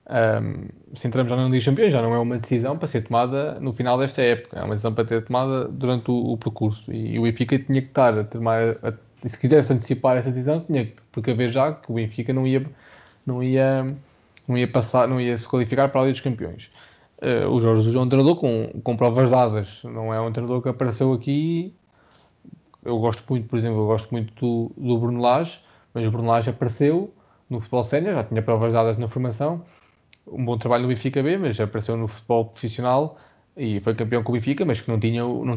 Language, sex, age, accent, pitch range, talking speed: Portuguese, male, 20-39, Brazilian, 115-135 Hz, 220 wpm